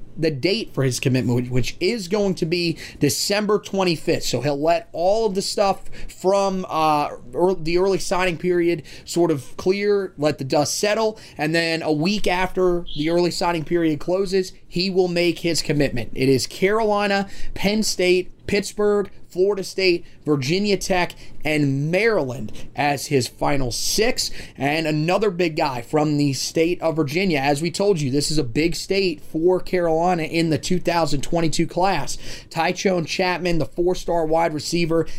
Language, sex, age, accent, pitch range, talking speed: English, male, 30-49, American, 155-190 Hz, 160 wpm